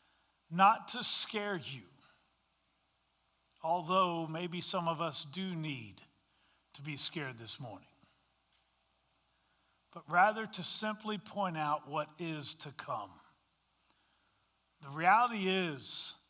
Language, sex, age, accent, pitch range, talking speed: English, male, 50-69, American, 140-190 Hz, 105 wpm